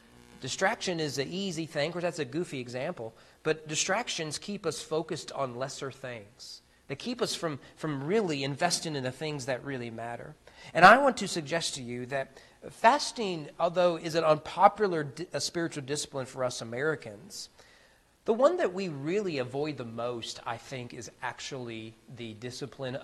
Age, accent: 40-59, American